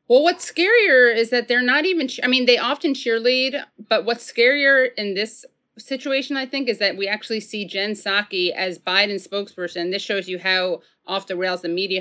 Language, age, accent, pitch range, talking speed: English, 30-49, American, 175-225 Hz, 200 wpm